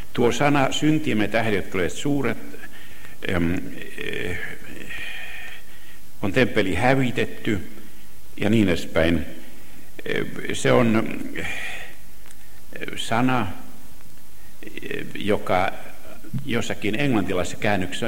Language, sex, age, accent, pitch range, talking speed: Finnish, male, 60-79, native, 80-110 Hz, 65 wpm